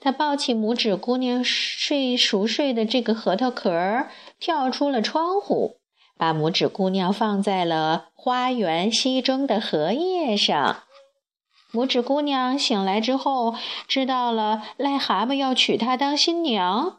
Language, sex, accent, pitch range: Chinese, female, native, 205-280 Hz